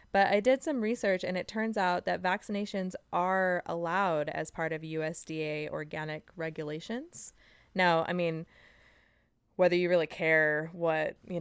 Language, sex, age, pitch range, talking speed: English, female, 20-39, 160-195 Hz, 145 wpm